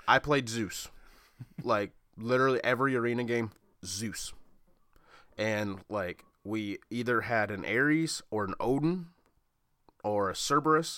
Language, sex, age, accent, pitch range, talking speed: English, male, 20-39, American, 105-125 Hz, 120 wpm